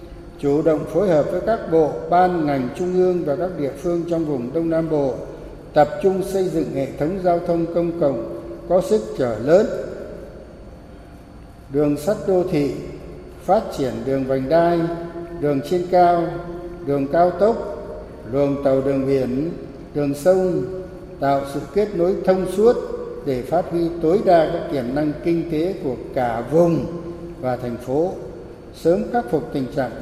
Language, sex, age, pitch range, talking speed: Vietnamese, male, 60-79, 140-185 Hz, 165 wpm